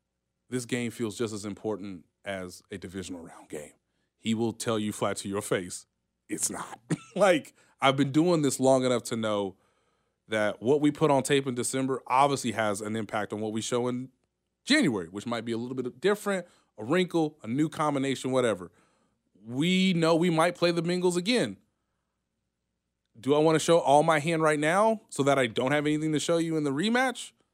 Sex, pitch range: male, 100-145 Hz